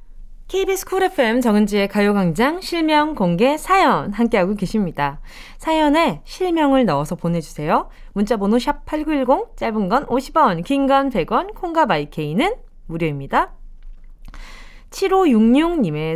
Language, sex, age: Korean, female, 20-39